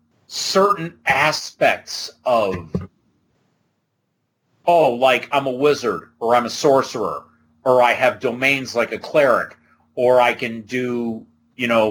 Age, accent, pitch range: 40-59, American, 110-150 Hz